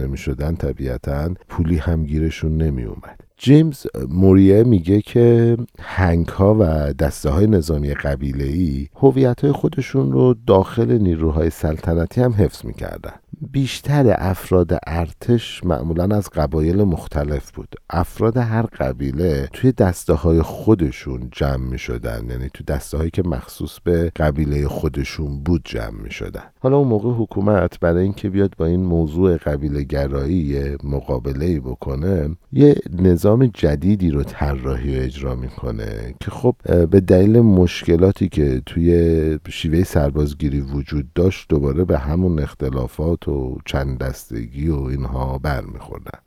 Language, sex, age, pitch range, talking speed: Persian, male, 50-69, 70-100 Hz, 135 wpm